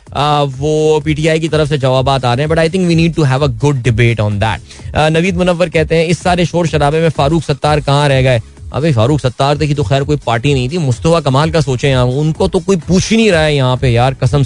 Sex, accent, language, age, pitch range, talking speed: male, native, Hindi, 20-39, 135-165 Hz, 70 wpm